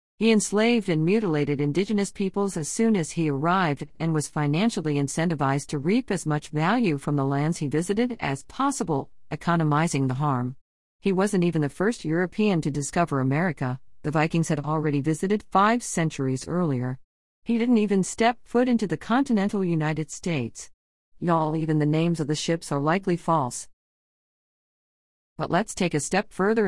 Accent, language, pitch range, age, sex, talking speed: American, English, 140-185 Hz, 50-69, female, 165 wpm